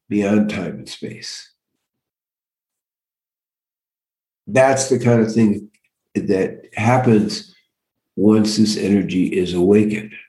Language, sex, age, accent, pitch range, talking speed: English, male, 60-79, American, 110-130 Hz, 95 wpm